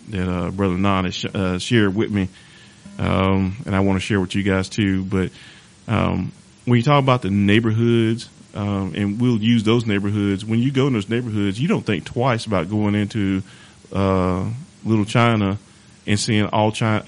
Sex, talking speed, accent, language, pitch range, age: male, 190 wpm, American, English, 100-120 Hz, 30-49